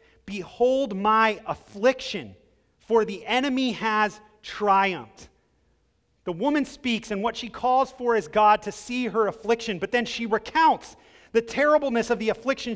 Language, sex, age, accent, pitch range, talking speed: English, male, 30-49, American, 220-280 Hz, 145 wpm